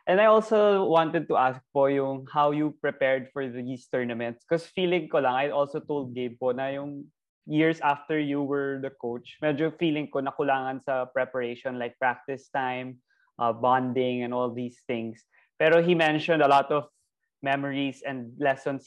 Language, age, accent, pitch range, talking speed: Filipino, 20-39, native, 125-145 Hz, 180 wpm